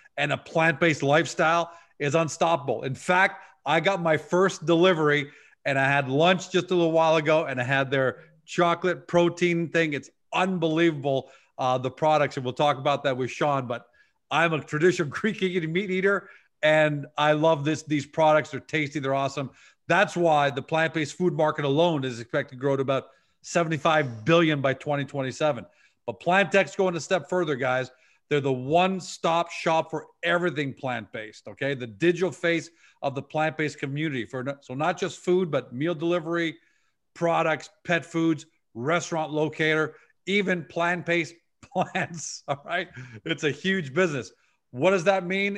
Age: 40-59